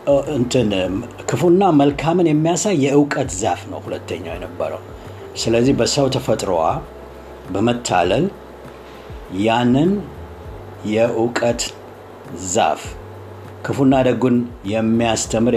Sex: male